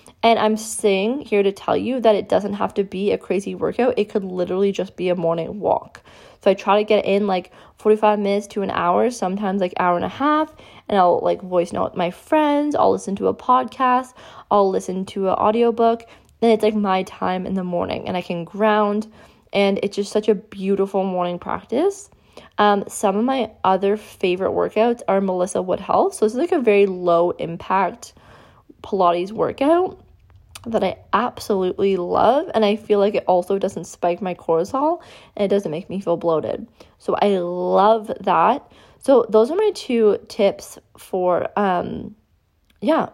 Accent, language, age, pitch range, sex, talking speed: American, English, 20-39, 185-230 Hz, female, 190 wpm